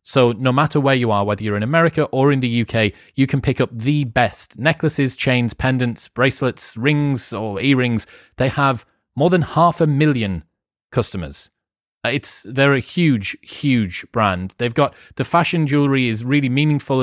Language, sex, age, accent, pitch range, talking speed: English, male, 30-49, British, 105-135 Hz, 175 wpm